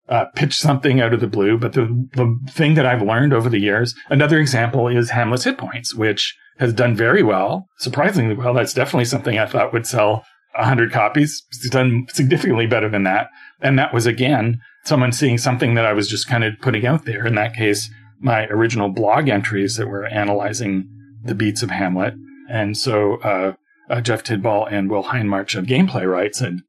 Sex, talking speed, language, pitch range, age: male, 200 wpm, English, 110-140 Hz, 40-59